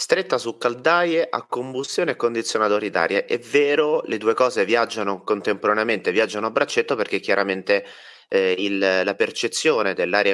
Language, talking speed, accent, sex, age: Italian, 145 wpm, native, male, 30-49